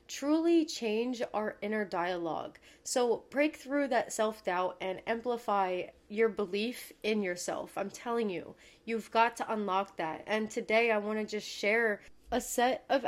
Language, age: English, 20-39